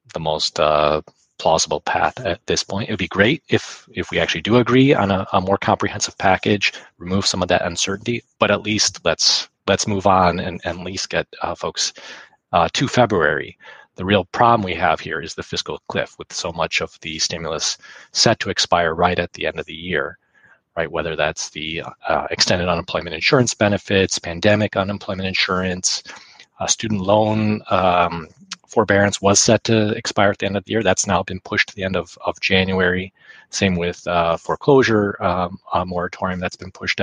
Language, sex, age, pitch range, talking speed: English, male, 30-49, 90-105 Hz, 190 wpm